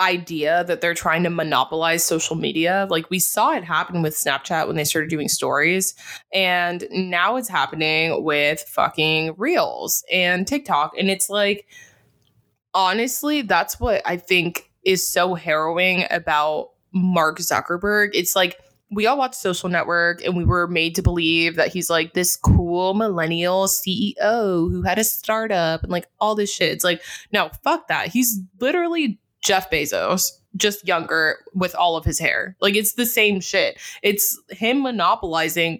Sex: female